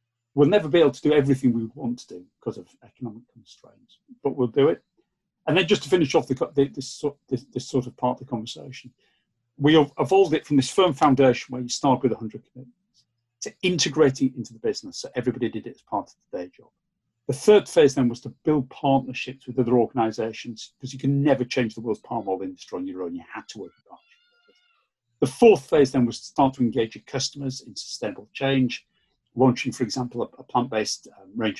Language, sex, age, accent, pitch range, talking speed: English, male, 40-59, British, 120-140 Hz, 215 wpm